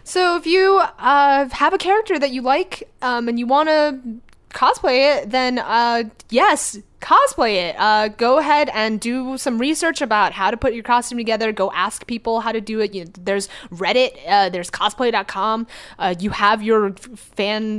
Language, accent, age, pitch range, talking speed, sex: English, American, 20-39, 205-260 Hz, 175 wpm, female